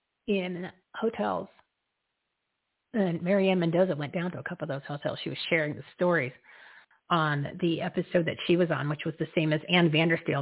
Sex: female